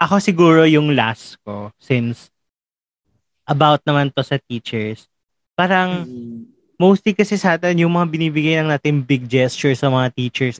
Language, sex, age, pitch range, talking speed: Filipino, male, 20-39, 130-165 Hz, 140 wpm